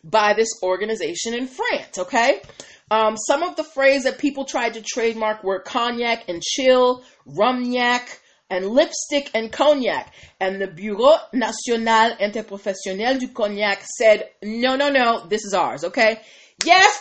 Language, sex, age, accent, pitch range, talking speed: English, female, 30-49, American, 215-280 Hz, 145 wpm